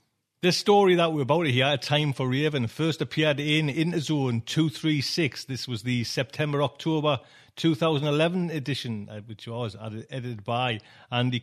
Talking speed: 135 wpm